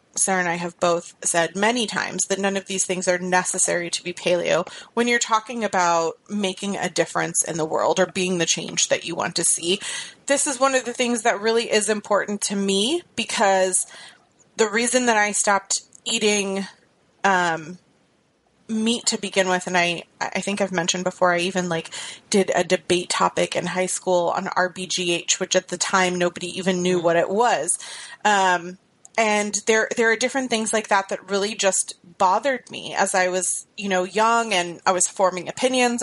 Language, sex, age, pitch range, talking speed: English, female, 30-49, 180-220 Hz, 190 wpm